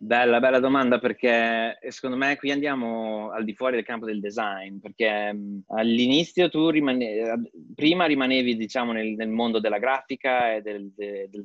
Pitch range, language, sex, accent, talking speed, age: 110-130 Hz, Italian, male, native, 155 wpm, 20-39